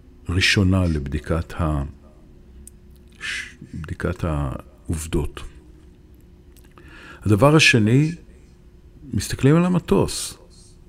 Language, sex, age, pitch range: Hebrew, male, 50-69, 80-115 Hz